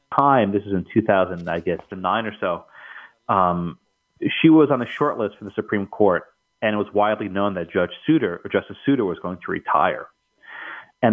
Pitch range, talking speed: 90-115 Hz, 195 wpm